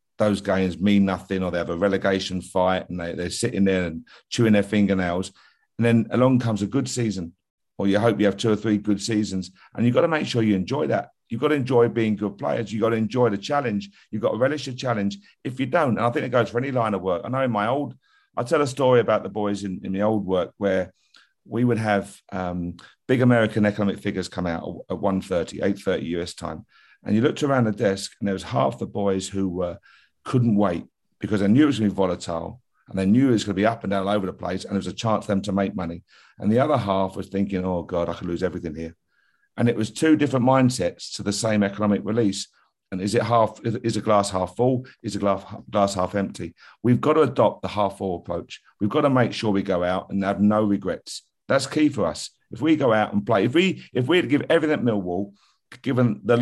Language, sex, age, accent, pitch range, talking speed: English, male, 50-69, British, 95-120 Hz, 255 wpm